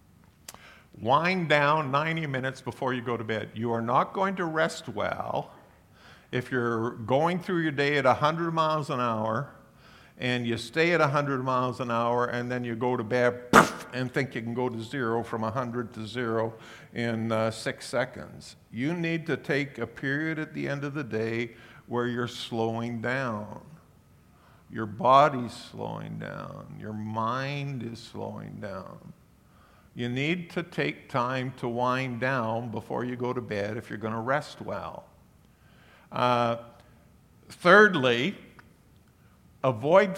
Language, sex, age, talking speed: English, male, 50-69, 155 wpm